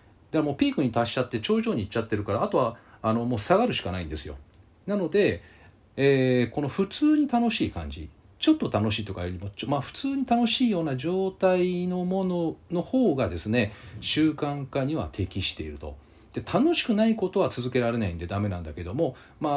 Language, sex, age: Japanese, male, 40-59